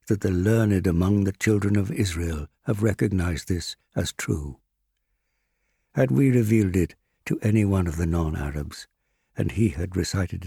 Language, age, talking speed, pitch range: English, 60-79, 155 wpm, 85-105 Hz